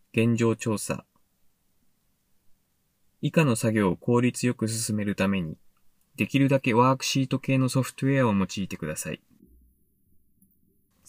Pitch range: 95-130 Hz